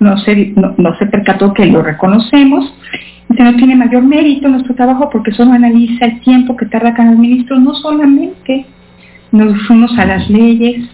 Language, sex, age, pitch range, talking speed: Spanish, female, 50-69, 210-270 Hz, 175 wpm